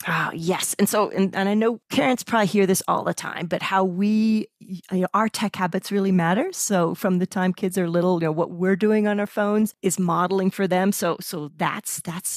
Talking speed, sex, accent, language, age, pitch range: 235 wpm, female, American, English, 40-59, 180-220 Hz